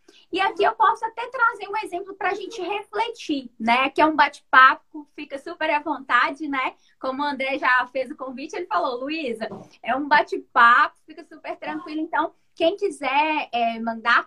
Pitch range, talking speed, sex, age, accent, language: 255-370 Hz, 180 wpm, female, 20-39, Brazilian, Portuguese